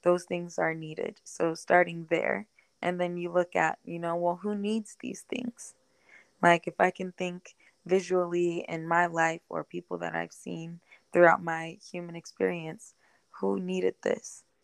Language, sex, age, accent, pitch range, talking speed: English, female, 20-39, American, 165-180 Hz, 165 wpm